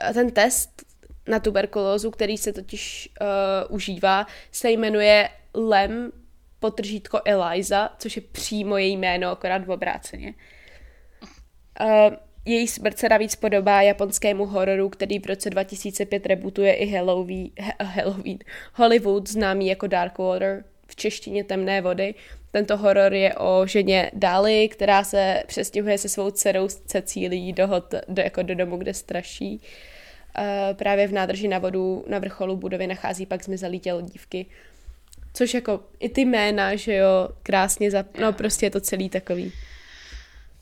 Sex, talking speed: female, 145 wpm